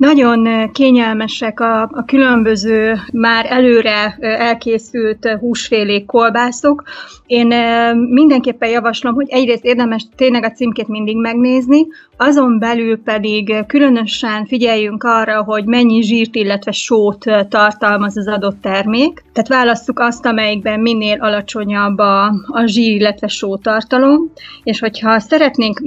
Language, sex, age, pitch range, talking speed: Hungarian, female, 30-49, 210-240 Hz, 110 wpm